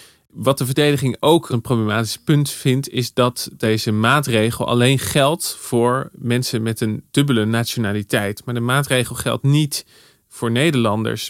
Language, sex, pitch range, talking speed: Dutch, male, 110-130 Hz, 145 wpm